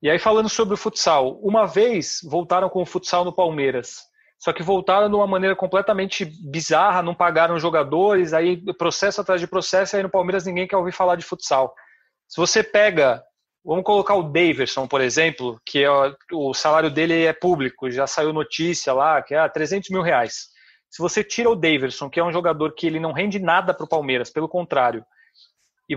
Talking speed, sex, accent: 195 wpm, male, Brazilian